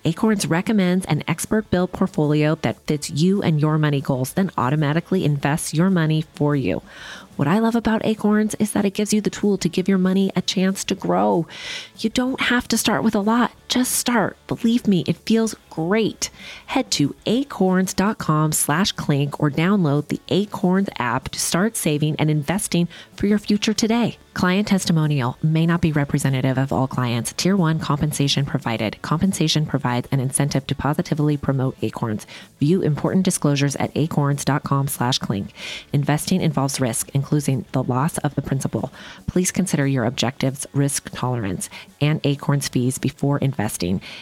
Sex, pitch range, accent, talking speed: female, 140-190 Hz, American, 165 wpm